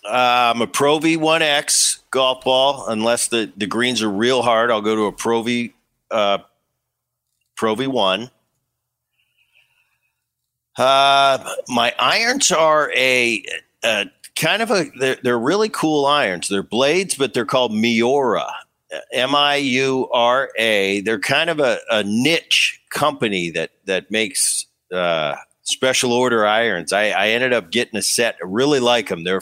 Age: 50-69